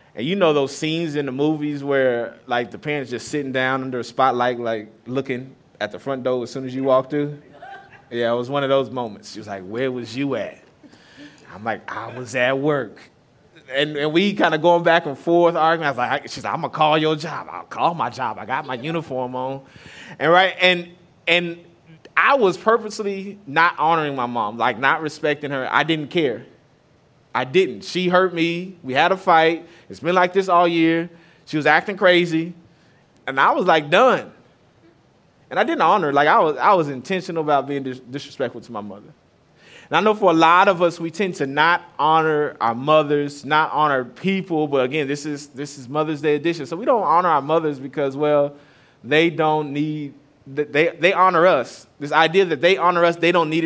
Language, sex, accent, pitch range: English, male, American, 135-170 Hz